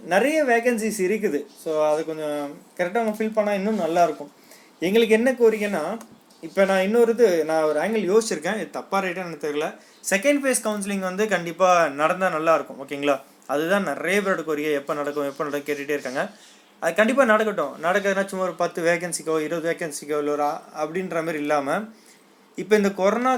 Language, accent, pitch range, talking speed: Tamil, native, 160-215 Hz, 165 wpm